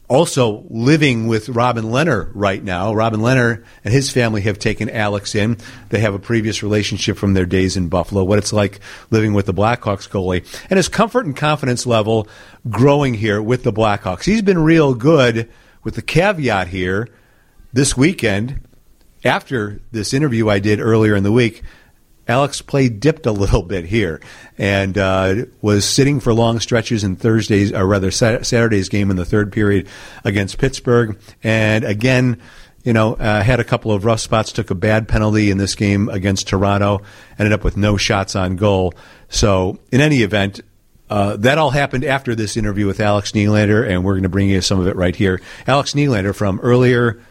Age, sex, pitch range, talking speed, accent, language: 50-69, male, 100-125 Hz, 185 wpm, American, English